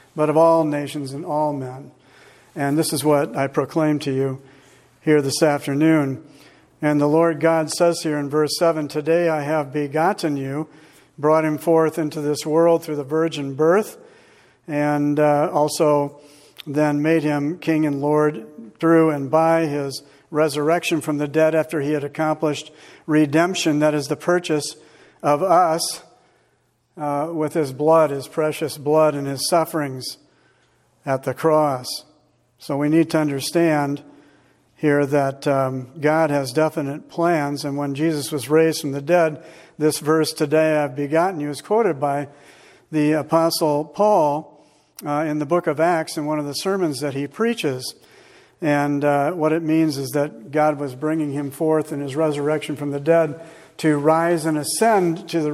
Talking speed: 165 wpm